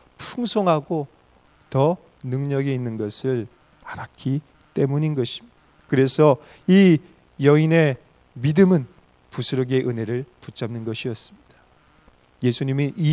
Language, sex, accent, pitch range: Korean, male, native, 120-155 Hz